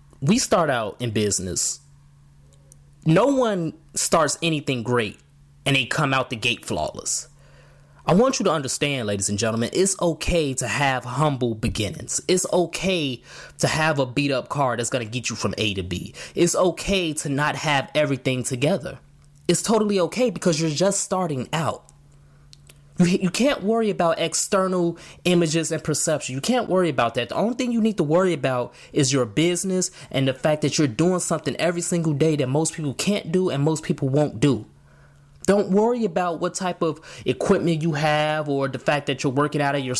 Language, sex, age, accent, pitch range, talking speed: English, male, 20-39, American, 135-180 Hz, 185 wpm